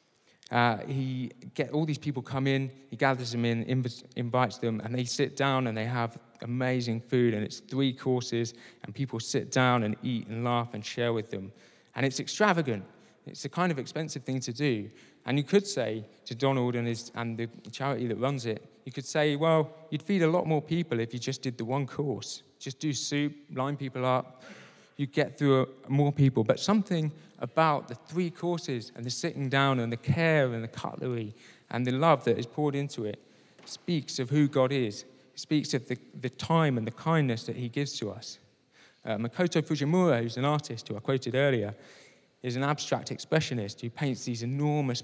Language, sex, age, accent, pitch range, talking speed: English, male, 20-39, British, 120-145 Hz, 205 wpm